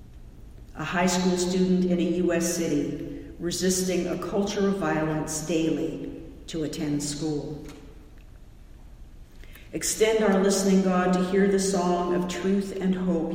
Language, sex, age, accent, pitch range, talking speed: English, female, 50-69, American, 160-190 Hz, 130 wpm